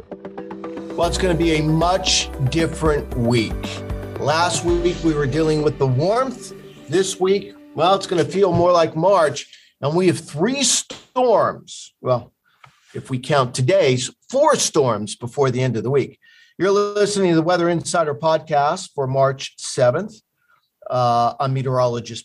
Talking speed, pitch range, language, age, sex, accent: 155 wpm, 125-160 Hz, English, 50-69, male, American